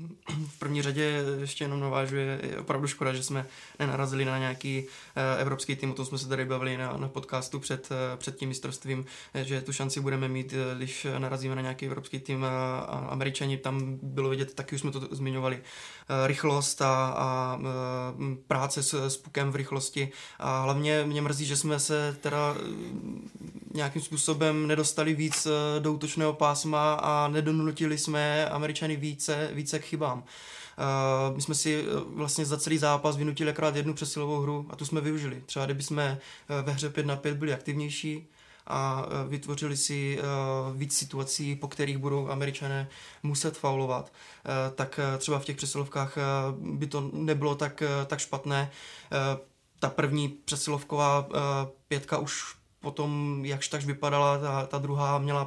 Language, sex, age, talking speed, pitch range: Czech, male, 20-39, 155 wpm, 135-150 Hz